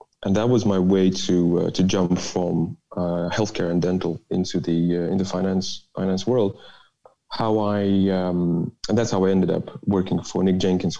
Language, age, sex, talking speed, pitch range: English, 30-49, male, 185 wpm, 90-105 Hz